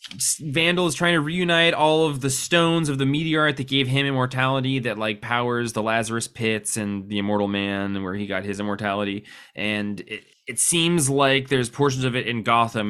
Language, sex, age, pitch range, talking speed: English, male, 20-39, 105-125 Hz, 200 wpm